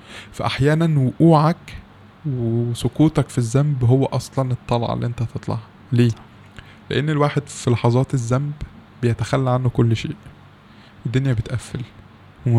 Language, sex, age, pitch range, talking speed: Arabic, male, 20-39, 115-140 Hz, 115 wpm